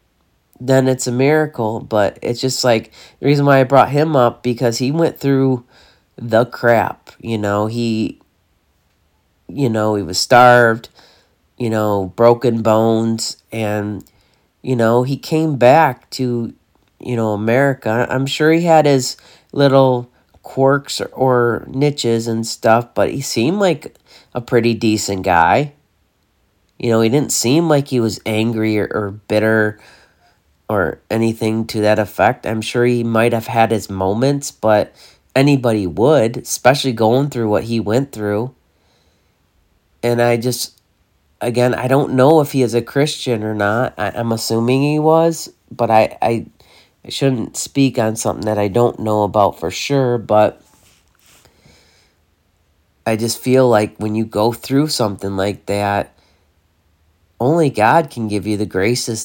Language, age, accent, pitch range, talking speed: English, 40-59, American, 105-130 Hz, 150 wpm